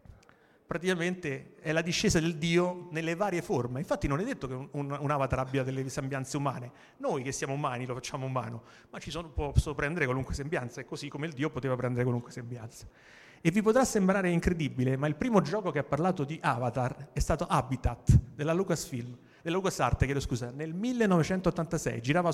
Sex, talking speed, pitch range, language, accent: male, 185 wpm, 130-170 Hz, Italian, native